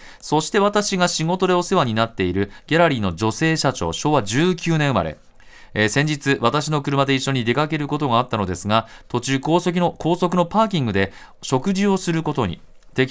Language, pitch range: Japanese, 110-155 Hz